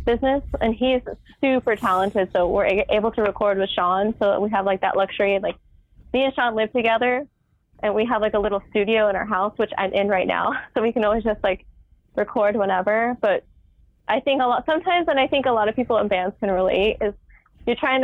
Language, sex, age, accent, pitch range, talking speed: English, female, 20-39, American, 195-230 Hz, 225 wpm